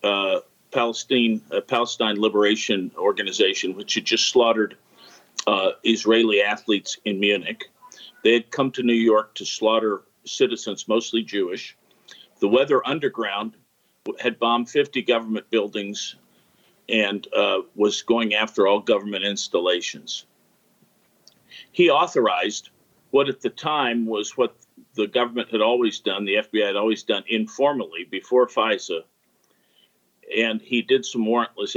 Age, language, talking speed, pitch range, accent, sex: 50-69, English, 130 wpm, 105-130 Hz, American, male